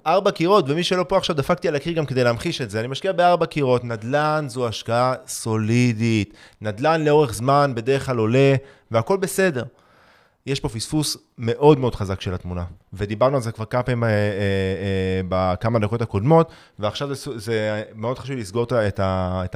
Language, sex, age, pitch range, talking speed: Hebrew, male, 30-49, 110-155 Hz, 180 wpm